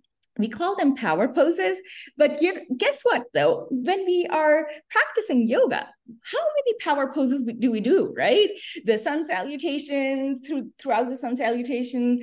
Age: 30-49